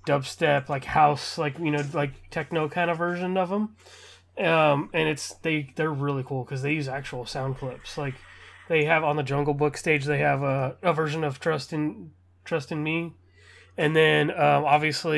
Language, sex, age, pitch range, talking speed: English, male, 20-39, 135-160 Hz, 195 wpm